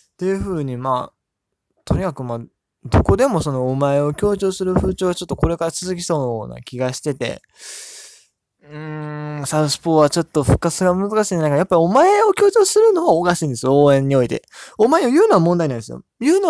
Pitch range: 125-175 Hz